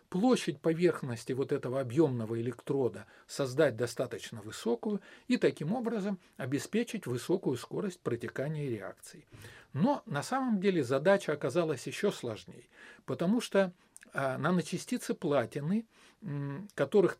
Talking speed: 105 wpm